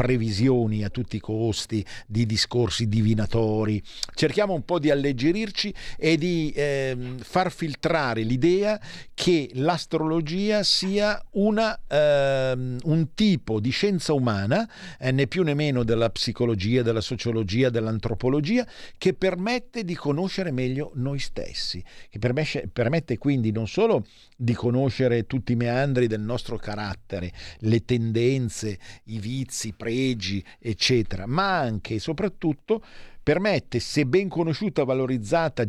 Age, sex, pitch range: 50-69, male, 110-150 Hz